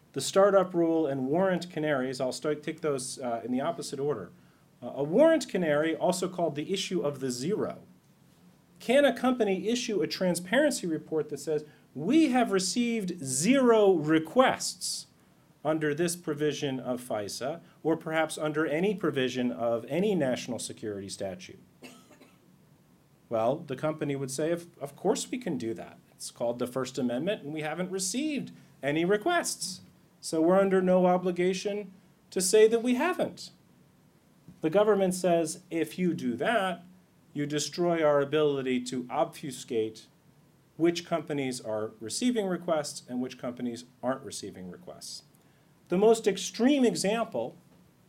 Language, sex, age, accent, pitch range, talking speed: English, male, 40-59, American, 140-185 Hz, 145 wpm